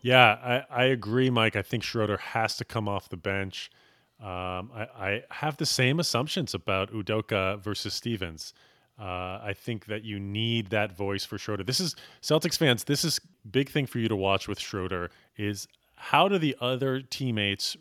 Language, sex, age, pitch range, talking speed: English, male, 30-49, 105-140 Hz, 185 wpm